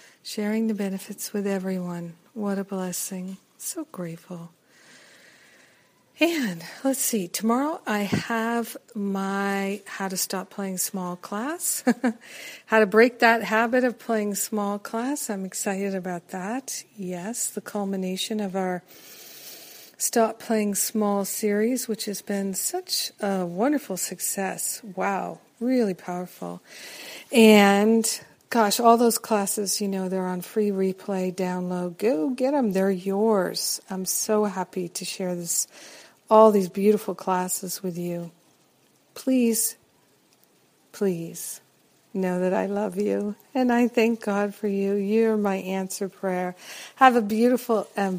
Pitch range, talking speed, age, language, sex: 185-225 Hz, 130 wpm, 50-69, English, female